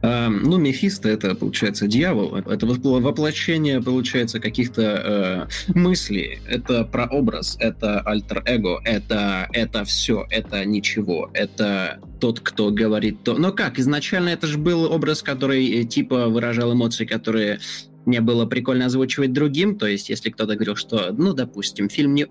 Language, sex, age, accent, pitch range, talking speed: Russian, male, 20-39, native, 110-145 Hz, 145 wpm